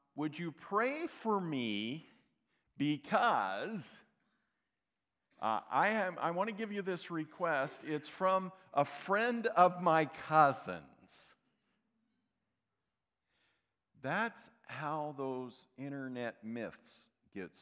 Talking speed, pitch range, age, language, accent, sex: 95 wpm, 95-135 Hz, 50-69, English, American, male